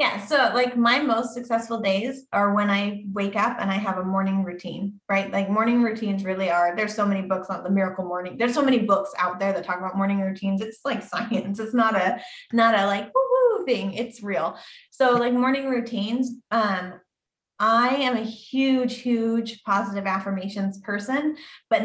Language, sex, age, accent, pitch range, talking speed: English, female, 20-39, American, 195-235 Hz, 190 wpm